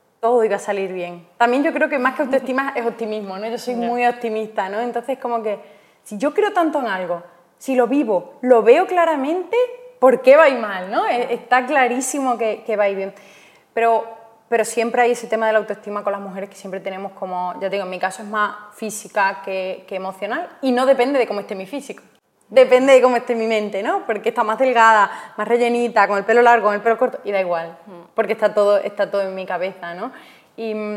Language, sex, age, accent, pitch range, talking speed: Spanish, female, 20-39, Spanish, 200-250 Hz, 235 wpm